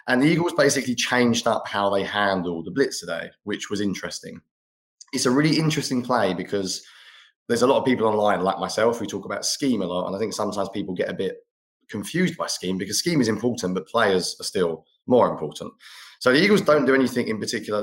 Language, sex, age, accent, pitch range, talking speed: English, male, 20-39, British, 95-130 Hz, 215 wpm